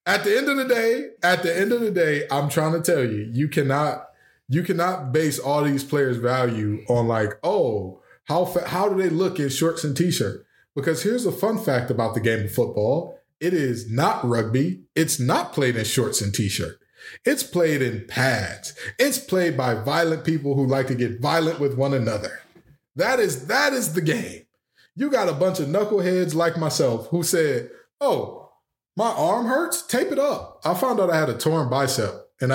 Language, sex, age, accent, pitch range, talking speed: English, male, 20-39, American, 130-185 Hz, 200 wpm